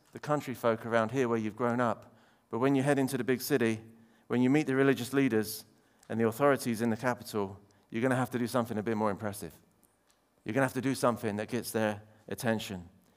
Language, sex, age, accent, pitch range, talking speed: English, male, 40-59, British, 115-165 Hz, 235 wpm